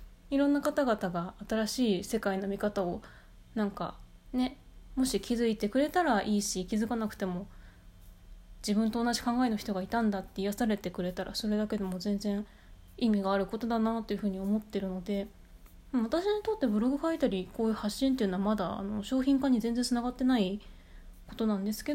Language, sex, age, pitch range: Japanese, female, 20-39, 195-245 Hz